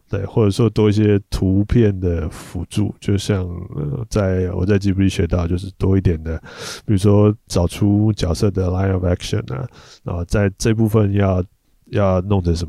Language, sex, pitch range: Chinese, male, 90-115 Hz